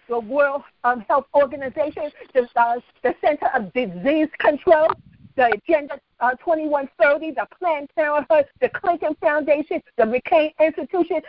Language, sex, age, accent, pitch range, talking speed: English, female, 50-69, American, 255-320 Hz, 135 wpm